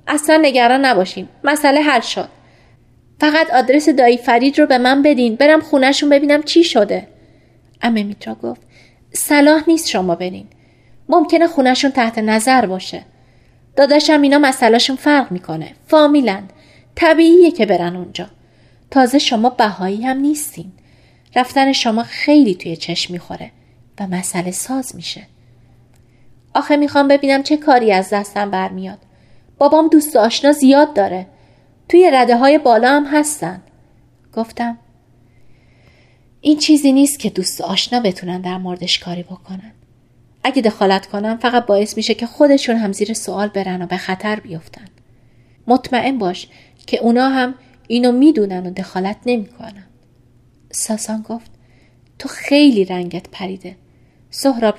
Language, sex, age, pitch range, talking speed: Persian, female, 30-49, 185-275 Hz, 135 wpm